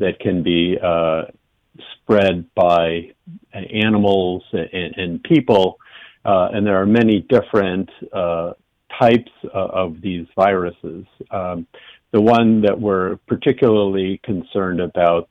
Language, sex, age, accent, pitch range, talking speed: English, male, 50-69, American, 90-105 Hz, 120 wpm